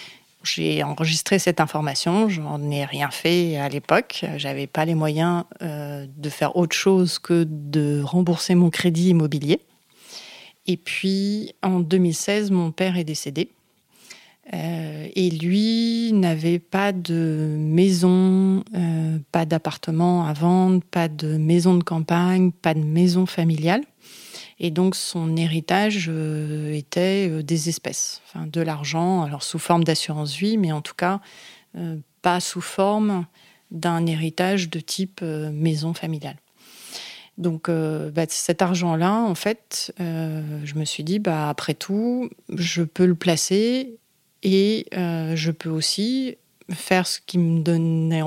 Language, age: French, 30-49